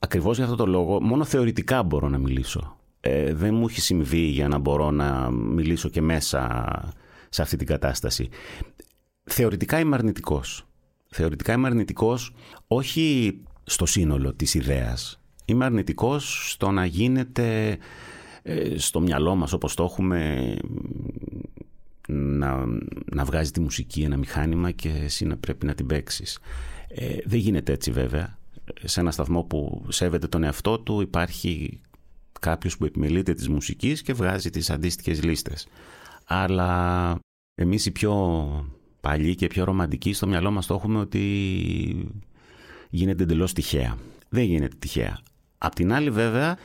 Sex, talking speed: male, 140 wpm